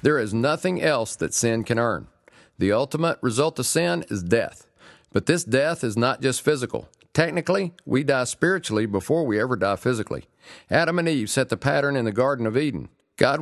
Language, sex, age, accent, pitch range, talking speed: English, male, 50-69, American, 110-150 Hz, 190 wpm